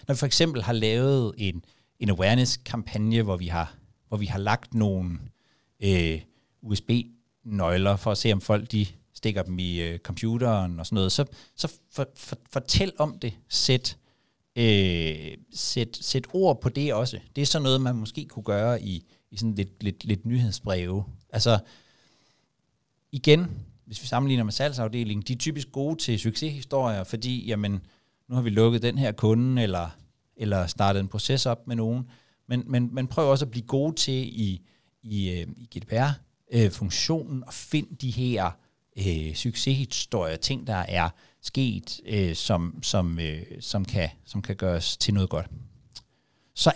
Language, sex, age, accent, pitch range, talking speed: Danish, male, 60-79, native, 100-130 Hz, 165 wpm